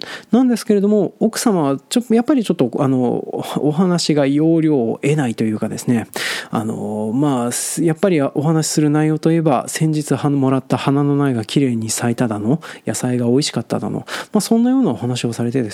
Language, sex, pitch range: Japanese, male, 130-200 Hz